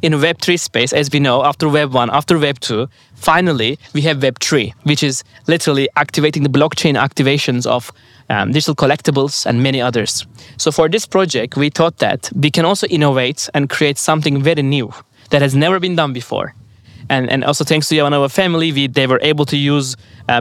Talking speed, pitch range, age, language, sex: 190 wpm, 130-155 Hz, 20-39, English, male